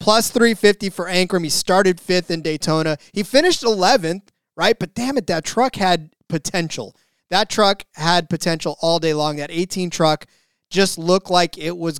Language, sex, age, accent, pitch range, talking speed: English, male, 20-39, American, 155-185 Hz, 175 wpm